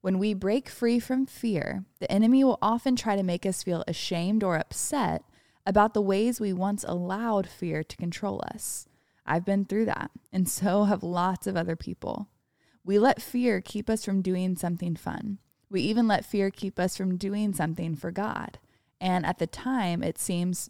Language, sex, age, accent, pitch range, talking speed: English, female, 20-39, American, 175-220 Hz, 190 wpm